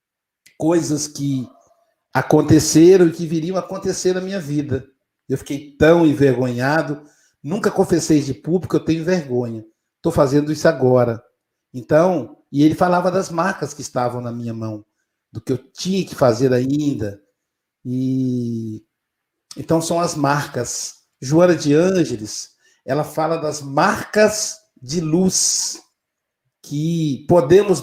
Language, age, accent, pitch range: Portuguese, 60-79, Brazilian, 135-185 Hz